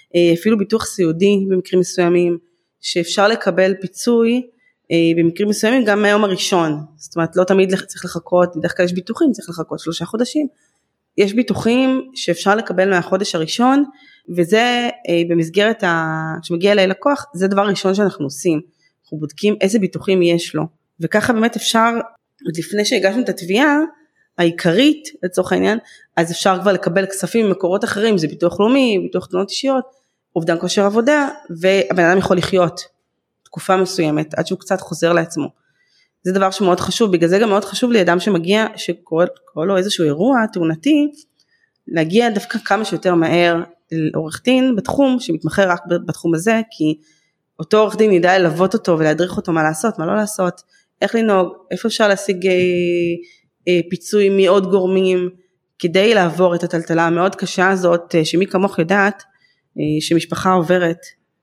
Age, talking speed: 20-39, 140 wpm